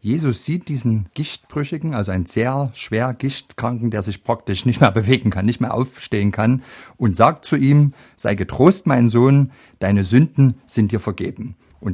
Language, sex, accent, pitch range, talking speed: German, male, German, 100-130 Hz, 170 wpm